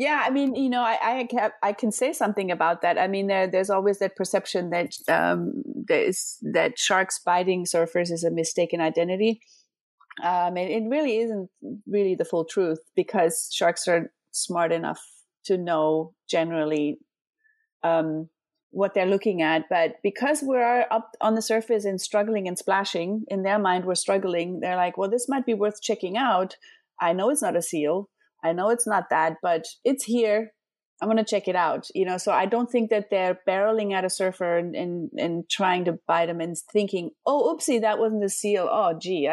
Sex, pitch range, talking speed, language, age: female, 175-220 Hz, 195 wpm, English, 30-49